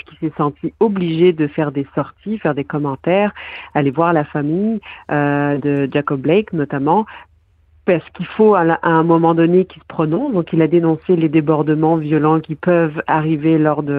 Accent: French